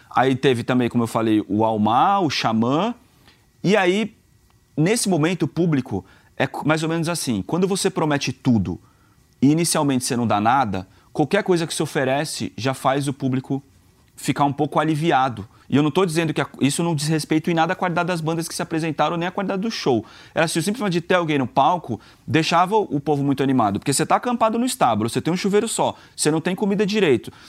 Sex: male